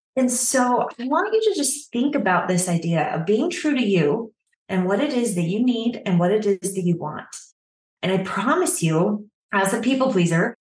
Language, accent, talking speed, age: English, American, 215 wpm, 20-39